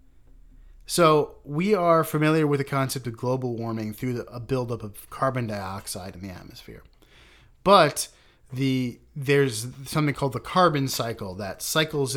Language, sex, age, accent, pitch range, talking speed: English, male, 30-49, American, 100-140 Hz, 150 wpm